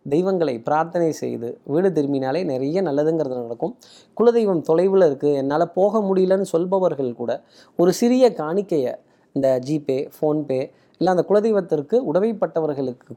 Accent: native